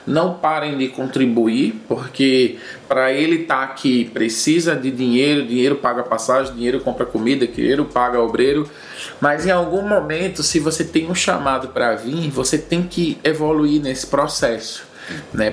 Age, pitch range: 20-39, 125-165 Hz